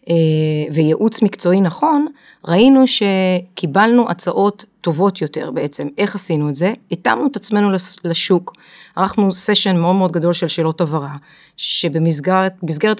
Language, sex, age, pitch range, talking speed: Hebrew, female, 30-49, 165-200 Hz, 120 wpm